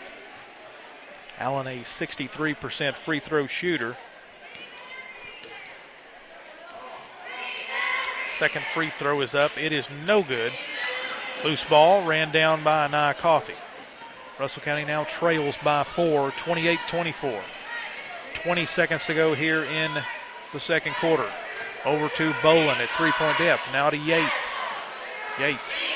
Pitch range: 145-170 Hz